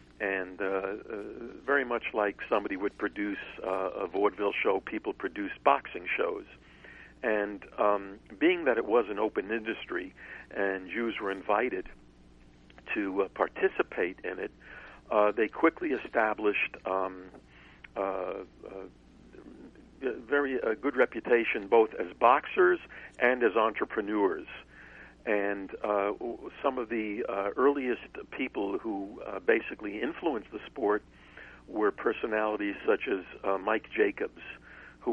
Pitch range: 95-115 Hz